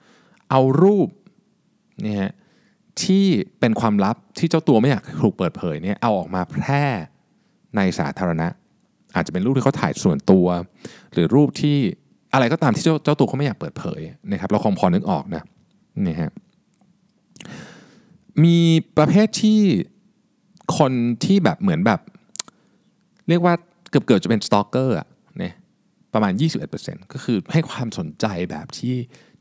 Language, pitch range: Thai, 125-200 Hz